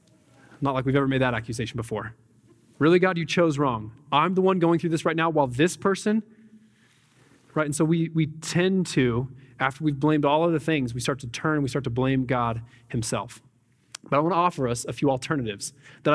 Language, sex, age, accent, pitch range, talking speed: English, male, 20-39, American, 130-180 Hz, 210 wpm